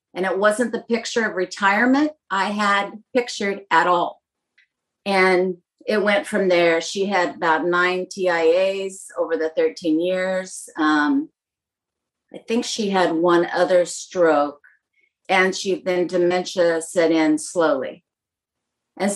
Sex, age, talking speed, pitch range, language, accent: female, 50-69, 130 wpm, 175-235 Hz, English, American